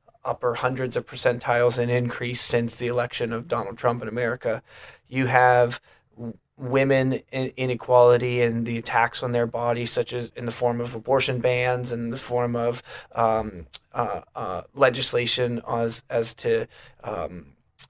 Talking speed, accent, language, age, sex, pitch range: 150 wpm, American, English, 30-49, male, 120-135 Hz